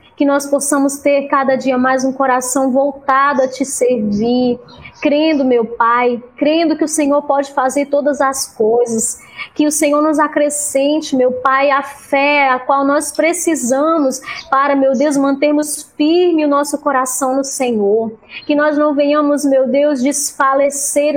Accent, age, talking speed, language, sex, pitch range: Brazilian, 20-39, 155 wpm, Portuguese, female, 265-300 Hz